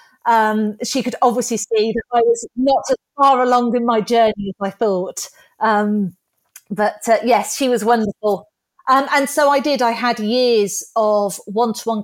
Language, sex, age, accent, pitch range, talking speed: English, female, 40-59, British, 200-230 Hz, 175 wpm